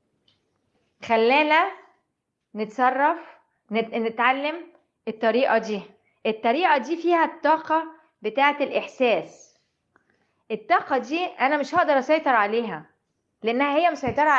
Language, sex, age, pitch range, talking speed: Arabic, female, 20-39, 200-255 Hz, 90 wpm